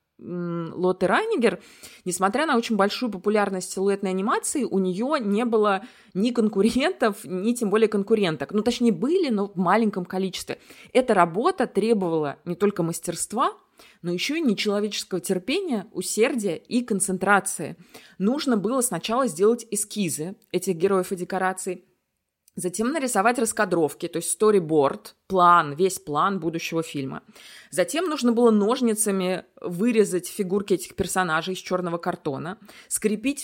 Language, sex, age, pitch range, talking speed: Russian, female, 20-39, 180-220 Hz, 130 wpm